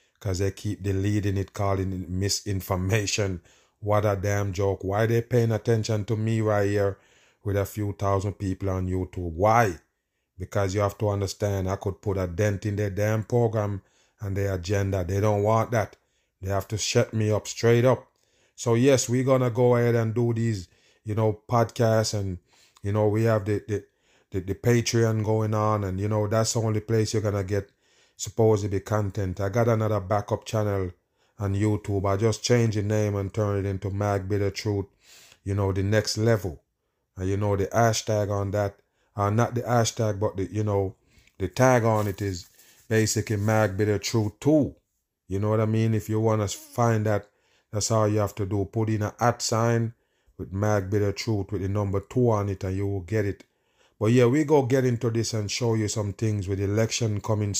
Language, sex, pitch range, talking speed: English, male, 100-110 Hz, 205 wpm